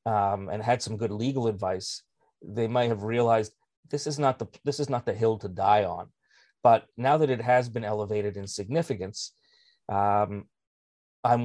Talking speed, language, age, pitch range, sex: 180 wpm, English, 30-49, 110-145 Hz, male